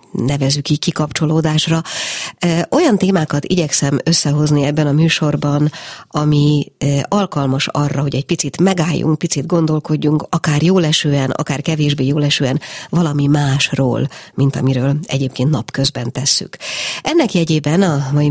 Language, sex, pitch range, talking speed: Hungarian, female, 145-165 Hz, 120 wpm